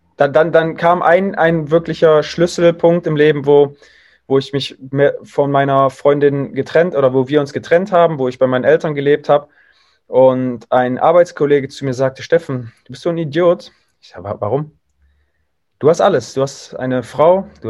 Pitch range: 125-160 Hz